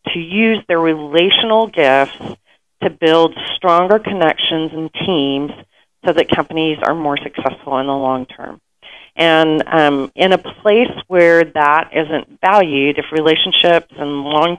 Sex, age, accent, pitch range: female, 30-49, American, 145-175 Hz